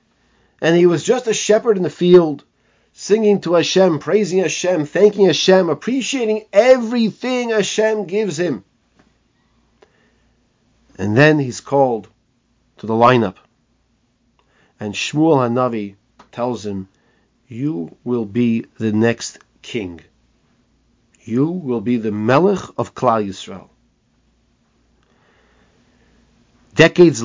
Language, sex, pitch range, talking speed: English, male, 120-165 Hz, 105 wpm